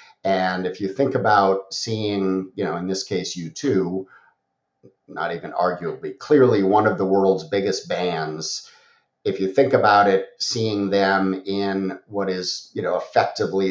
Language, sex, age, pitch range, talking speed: English, male, 50-69, 90-105 Hz, 155 wpm